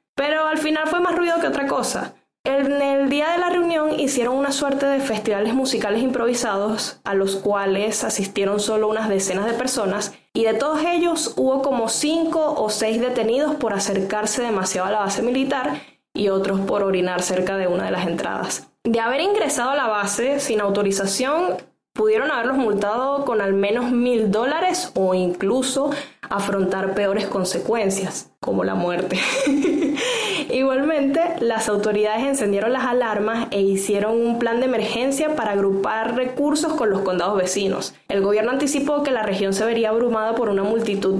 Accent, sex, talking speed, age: American, female, 165 wpm, 10-29